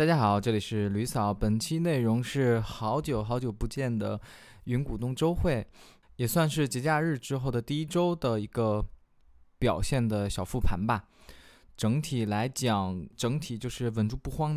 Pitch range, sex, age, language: 100-125 Hz, male, 20-39, Chinese